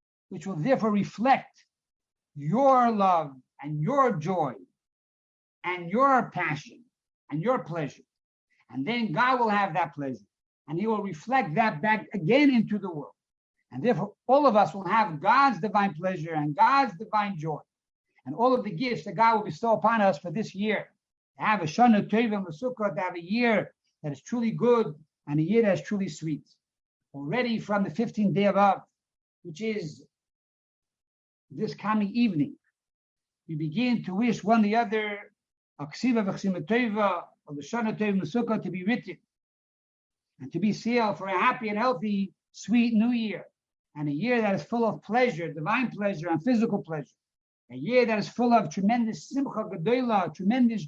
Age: 60-79